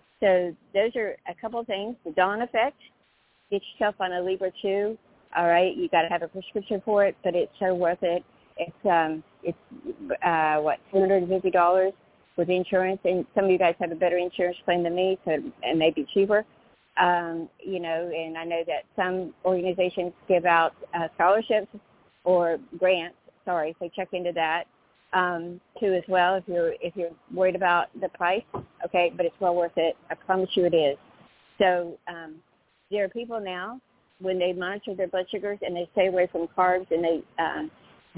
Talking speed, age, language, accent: 195 wpm, 50-69, English, American